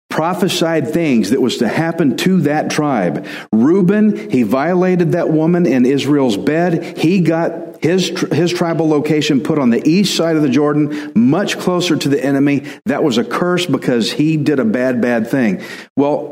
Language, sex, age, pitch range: English, male, 50-69, 130-170 Hz